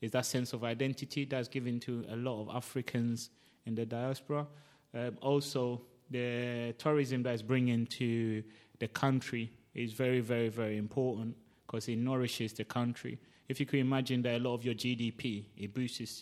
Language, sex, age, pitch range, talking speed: English, male, 30-49, 115-135 Hz, 170 wpm